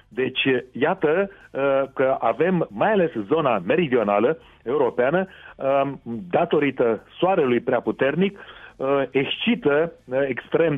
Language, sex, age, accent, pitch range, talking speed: Romanian, male, 40-59, native, 115-150 Hz, 85 wpm